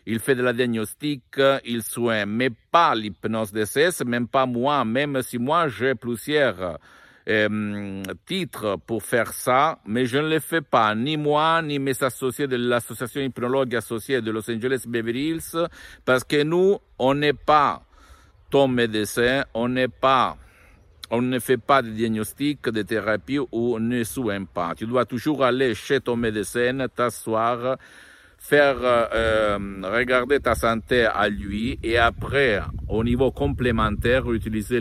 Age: 50-69